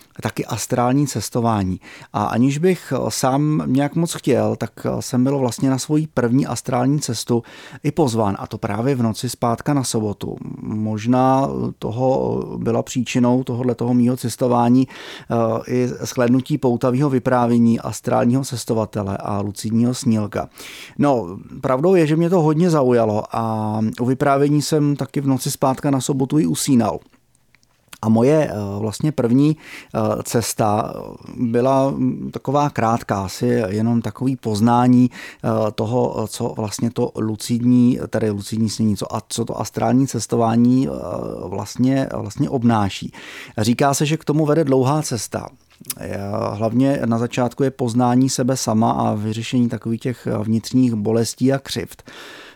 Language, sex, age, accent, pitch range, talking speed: Czech, male, 30-49, native, 115-135 Hz, 130 wpm